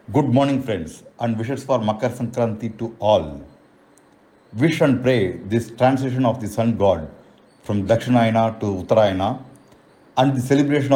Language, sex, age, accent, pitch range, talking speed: English, male, 50-69, Indian, 110-135 Hz, 140 wpm